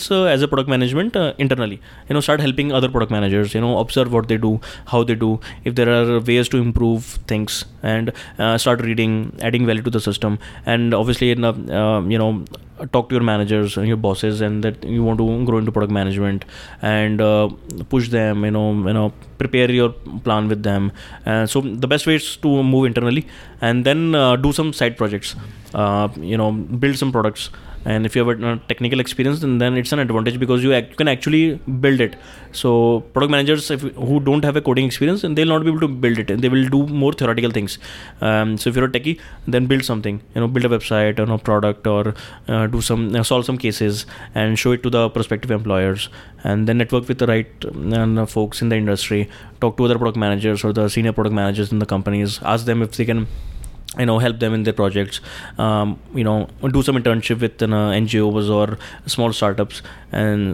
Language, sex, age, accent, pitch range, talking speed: English, male, 20-39, Indian, 105-125 Hz, 215 wpm